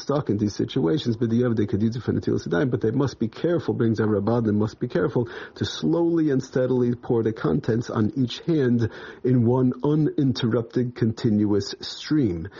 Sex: male